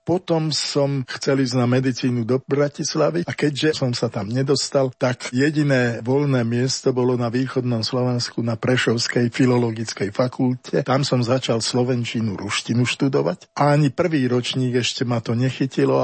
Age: 50-69